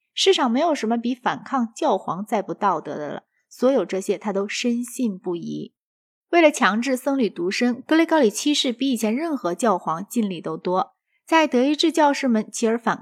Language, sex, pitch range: Chinese, female, 200-260 Hz